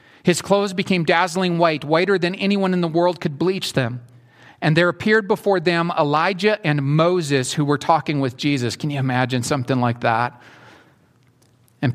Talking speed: 170 wpm